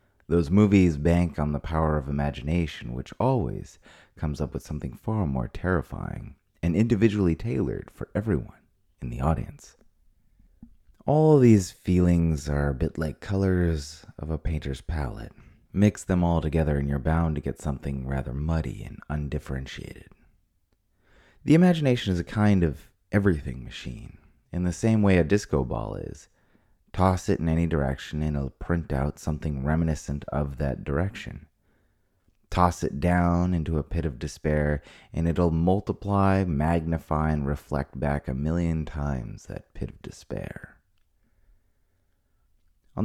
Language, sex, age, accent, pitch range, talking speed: English, male, 30-49, American, 75-90 Hz, 145 wpm